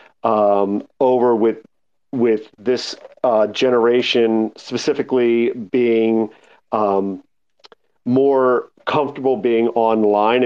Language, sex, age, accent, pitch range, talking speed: English, male, 50-69, American, 110-130 Hz, 80 wpm